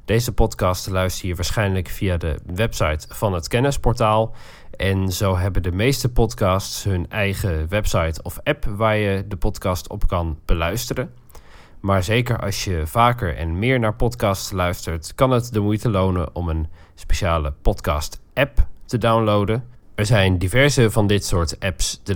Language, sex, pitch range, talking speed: Dutch, male, 85-115 Hz, 155 wpm